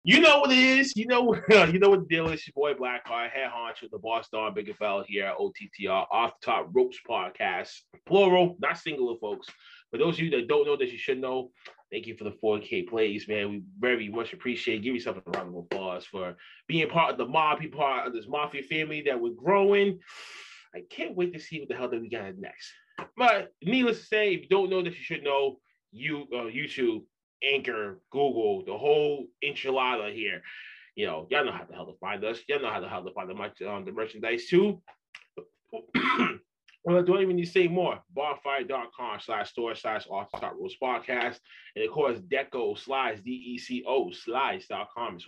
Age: 20-39